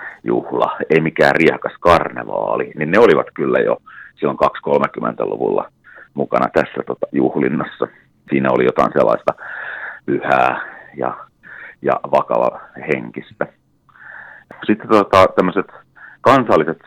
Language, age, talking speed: Finnish, 40-59, 105 wpm